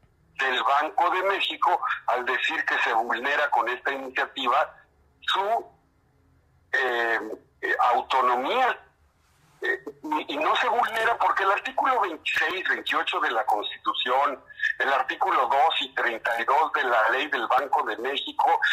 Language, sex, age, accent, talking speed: Spanish, male, 50-69, Mexican, 135 wpm